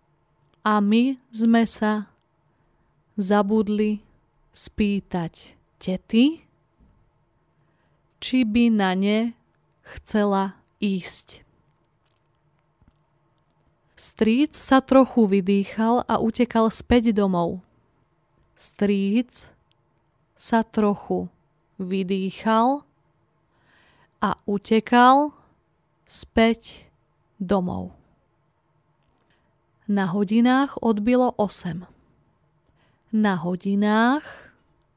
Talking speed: 60 wpm